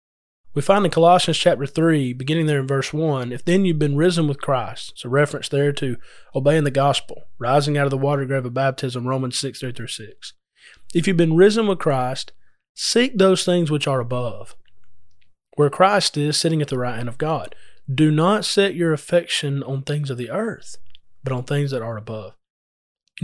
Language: English